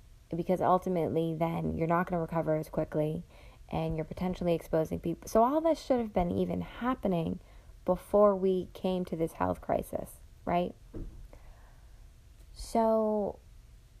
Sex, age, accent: female, 20-39, American